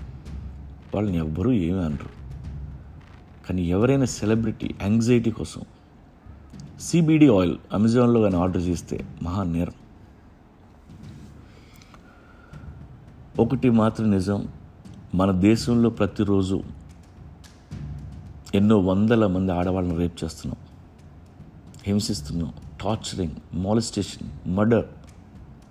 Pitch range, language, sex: 80-110 Hz, Telugu, male